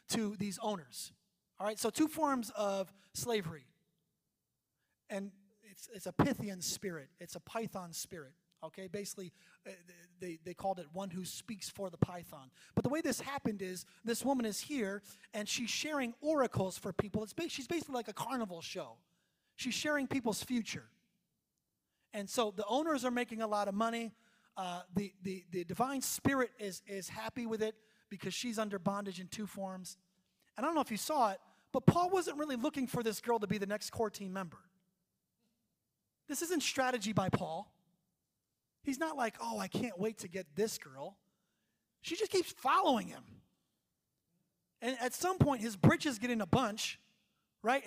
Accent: American